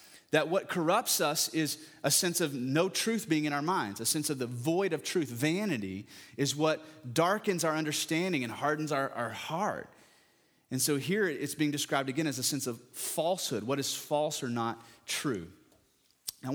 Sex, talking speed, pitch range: male, 185 wpm, 120-155 Hz